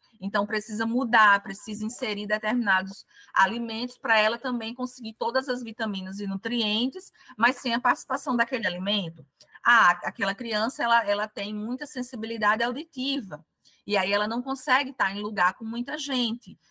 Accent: Brazilian